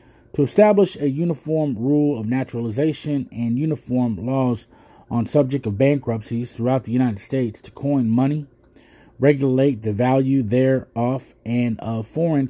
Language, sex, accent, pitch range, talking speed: English, male, American, 115-145 Hz, 135 wpm